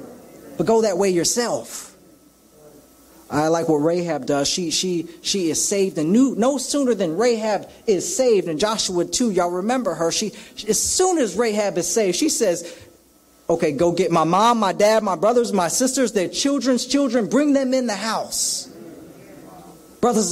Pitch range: 155-250 Hz